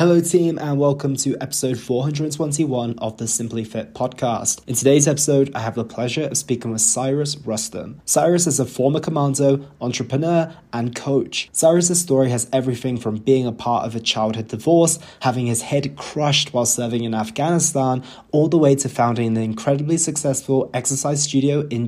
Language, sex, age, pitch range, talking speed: English, male, 20-39, 115-150 Hz, 175 wpm